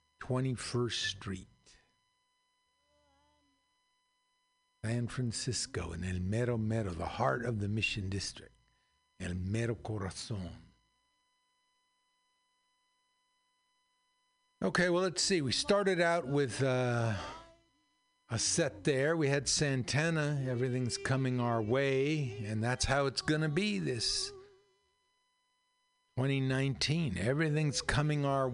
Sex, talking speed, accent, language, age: male, 100 wpm, American, English, 60-79